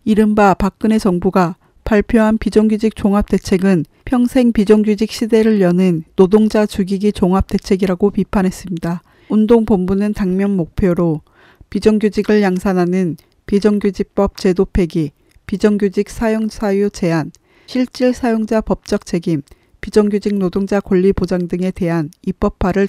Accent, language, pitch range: native, Korean, 185-215 Hz